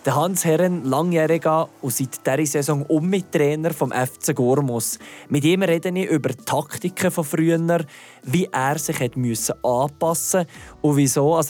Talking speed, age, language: 165 wpm, 20-39, German